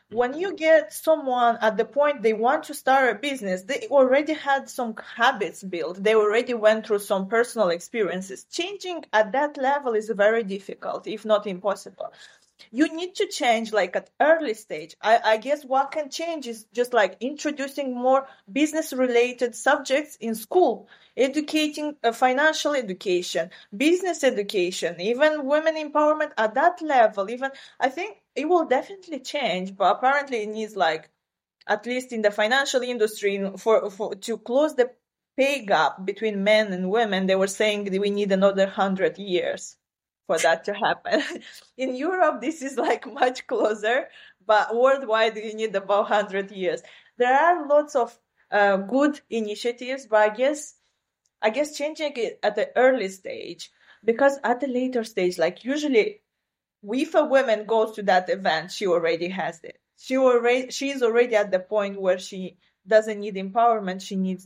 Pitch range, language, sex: 205-285 Hz, English, female